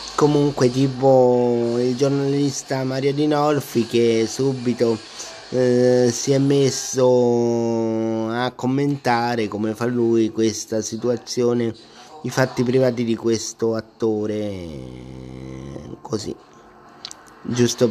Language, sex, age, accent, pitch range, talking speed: Italian, male, 30-49, native, 115-135 Hz, 95 wpm